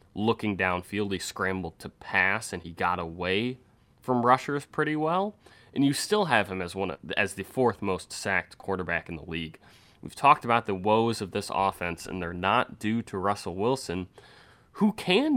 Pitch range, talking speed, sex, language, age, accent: 95-120 Hz, 180 wpm, male, English, 20-39, American